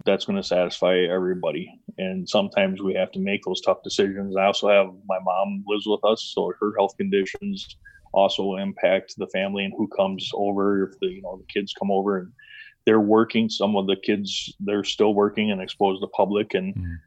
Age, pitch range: 20-39, 95-125 Hz